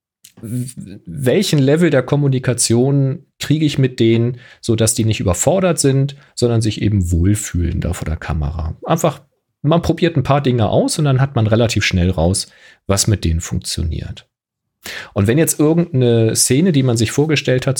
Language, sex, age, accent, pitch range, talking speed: German, male, 40-59, German, 110-150 Hz, 165 wpm